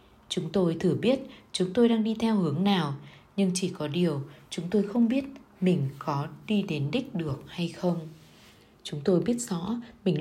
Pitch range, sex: 150-200 Hz, female